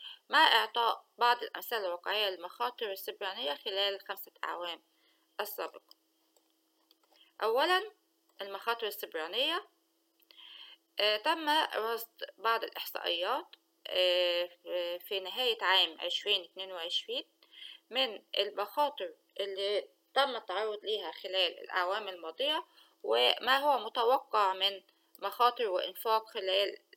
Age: 20-39